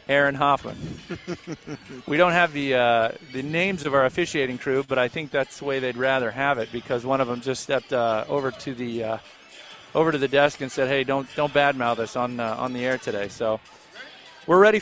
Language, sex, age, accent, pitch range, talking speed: English, male, 40-59, American, 125-155 Hz, 220 wpm